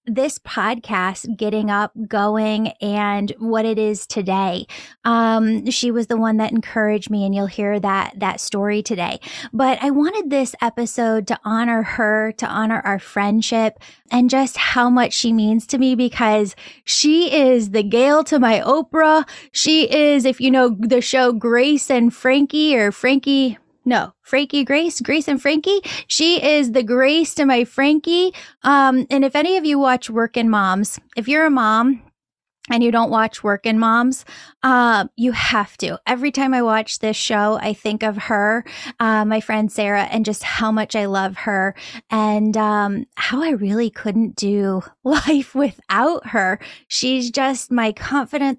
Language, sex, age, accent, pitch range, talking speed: English, female, 10-29, American, 215-265 Hz, 170 wpm